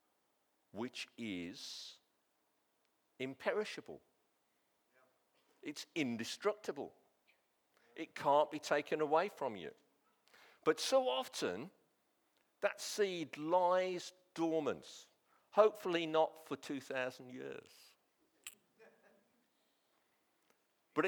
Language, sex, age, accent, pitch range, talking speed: English, male, 50-69, British, 140-180 Hz, 70 wpm